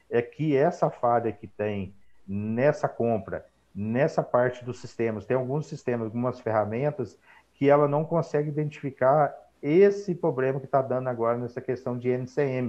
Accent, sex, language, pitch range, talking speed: Brazilian, male, Portuguese, 115-145 Hz, 150 wpm